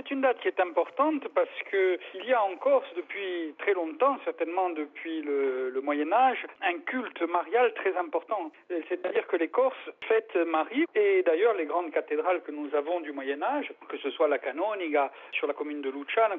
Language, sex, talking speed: French, male, 185 wpm